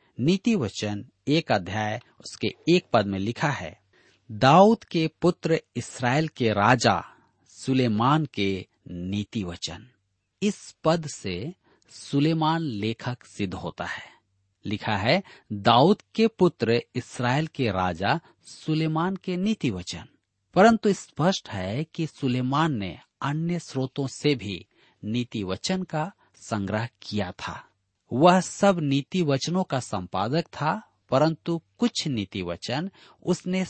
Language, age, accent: Hindi, 40-59, native